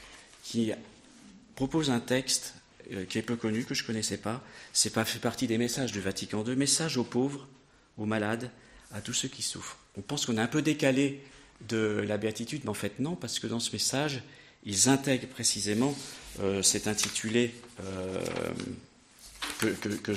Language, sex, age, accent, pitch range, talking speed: French, male, 40-59, French, 105-135 Hz, 185 wpm